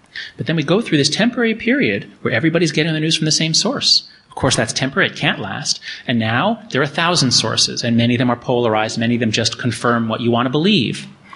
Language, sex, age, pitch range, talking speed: English, male, 30-49, 120-165 Hz, 250 wpm